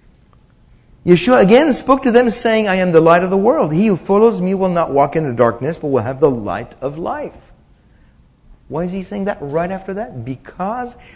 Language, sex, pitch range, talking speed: English, male, 140-190 Hz, 210 wpm